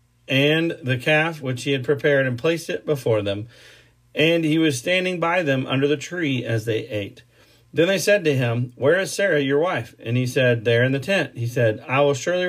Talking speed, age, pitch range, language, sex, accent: 220 wpm, 40-59, 125-155 Hz, English, male, American